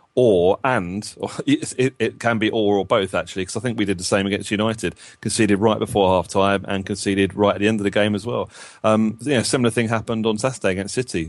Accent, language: British, English